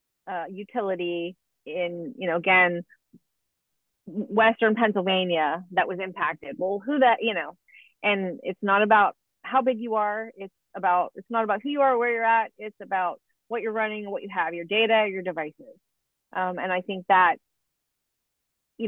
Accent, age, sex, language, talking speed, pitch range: American, 30-49, female, English, 170 wpm, 185-225 Hz